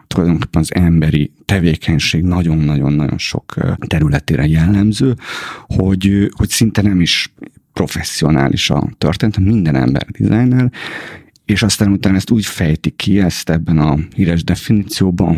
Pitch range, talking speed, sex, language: 80-100 Hz, 115 wpm, male, Hungarian